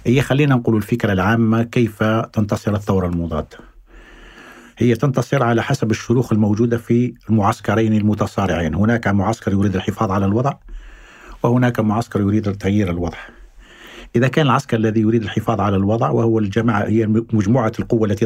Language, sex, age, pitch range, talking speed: Arabic, male, 50-69, 110-155 Hz, 140 wpm